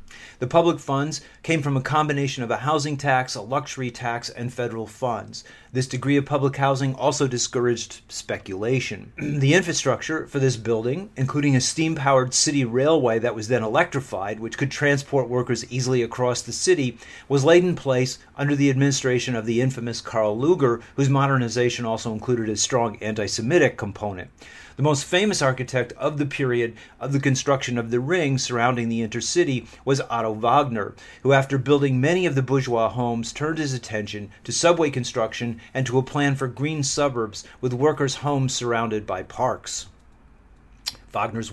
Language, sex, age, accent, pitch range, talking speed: French, male, 40-59, American, 120-140 Hz, 165 wpm